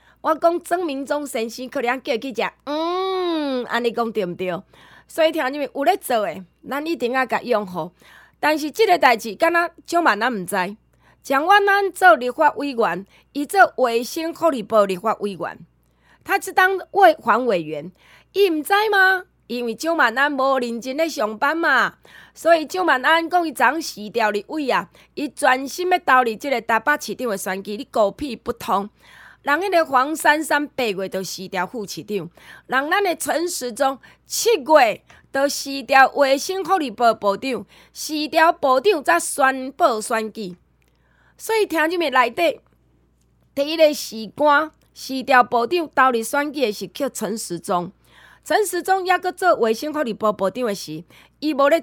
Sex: female